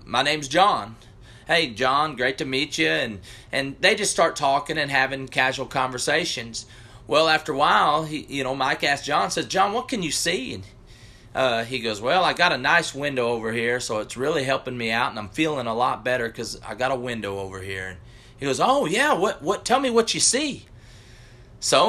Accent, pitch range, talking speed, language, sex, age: American, 120-170 Hz, 215 wpm, English, male, 30-49